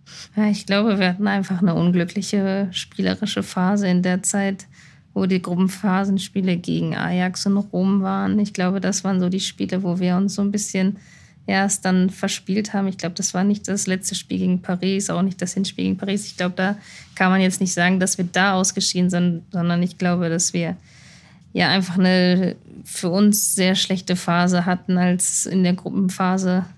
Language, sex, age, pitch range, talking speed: German, female, 20-39, 180-195 Hz, 190 wpm